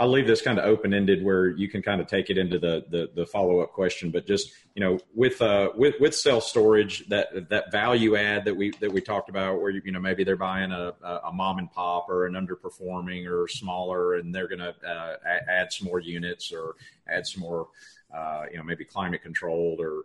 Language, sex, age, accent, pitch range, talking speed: English, male, 40-59, American, 90-105 Hz, 225 wpm